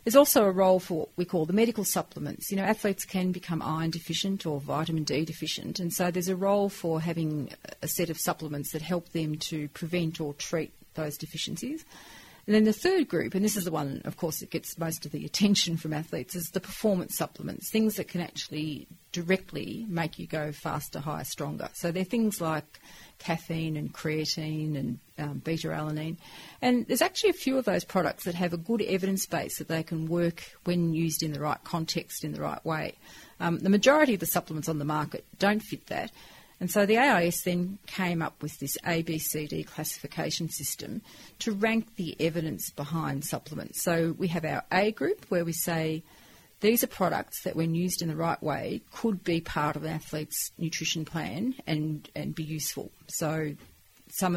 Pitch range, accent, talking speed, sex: 155-195 Hz, Australian, 195 wpm, female